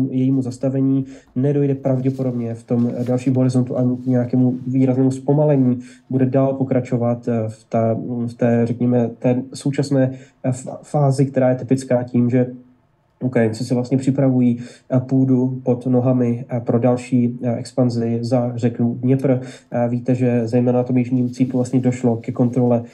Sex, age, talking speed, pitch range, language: male, 20-39, 135 wpm, 115-125 Hz, Slovak